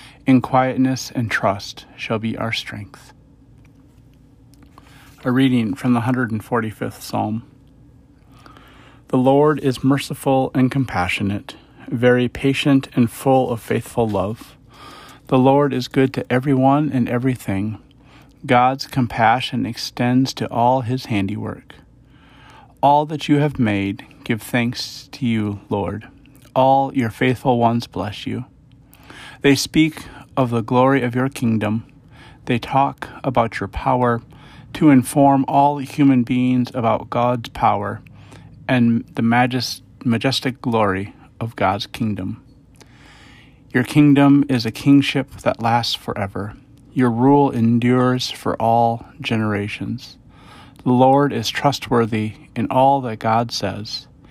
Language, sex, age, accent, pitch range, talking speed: English, male, 40-59, American, 115-135 Hz, 120 wpm